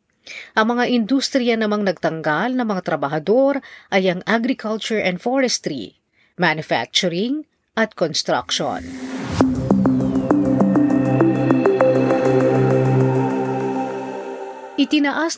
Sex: female